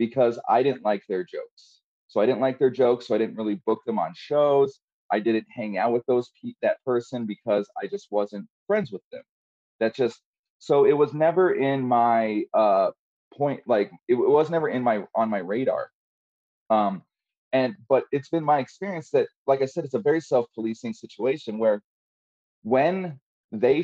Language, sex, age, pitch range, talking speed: English, male, 30-49, 110-160 Hz, 190 wpm